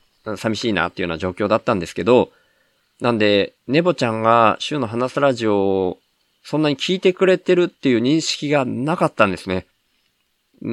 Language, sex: Japanese, male